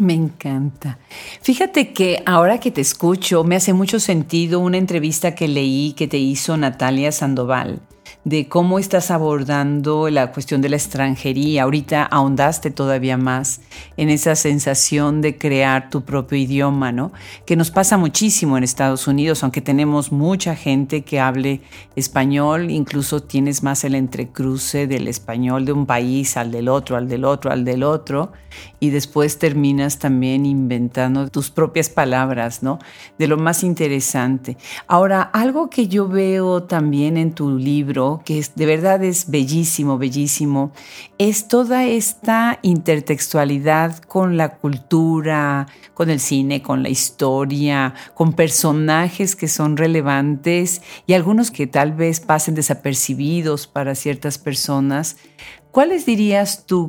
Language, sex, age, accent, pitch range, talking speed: Spanish, female, 50-69, Mexican, 135-165 Hz, 140 wpm